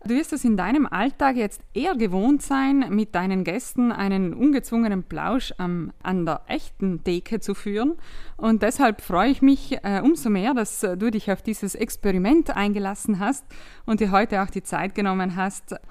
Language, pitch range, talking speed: German, 180-235 Hz, 170 wpm